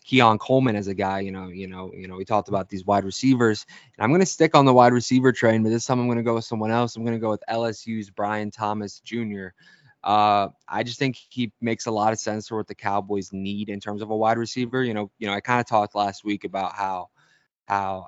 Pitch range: 100-115 Hz